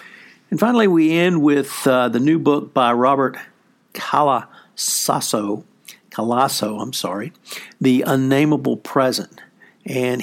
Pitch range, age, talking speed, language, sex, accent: 110-135 Hz, 60-79, 110 wpm, English, male, American